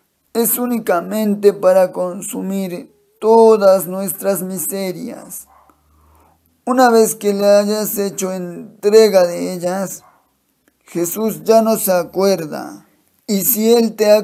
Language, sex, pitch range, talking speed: Spanish, male, 185-220 Hz, 110 wpm